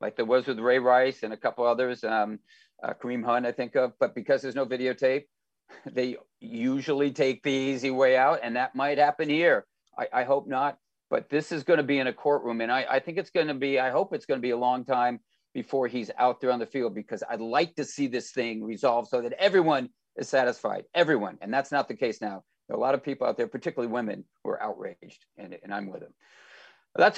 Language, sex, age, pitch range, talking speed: English, male, 50-69, 125-200 Hz, 240 wpm